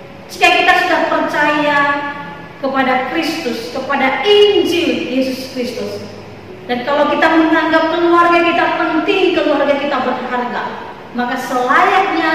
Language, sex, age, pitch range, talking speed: Indonesian, female, 30-49, 235-325 Hz, 105 wpm